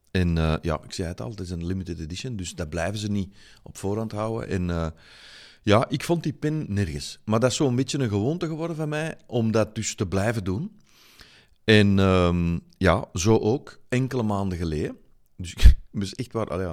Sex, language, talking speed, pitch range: male, Dutch, 210 wpm, 95-125 Hz